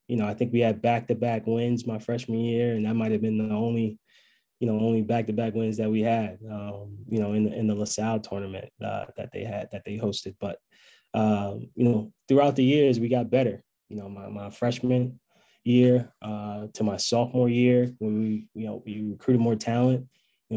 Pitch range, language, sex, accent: 110-120 Hz, English, male, American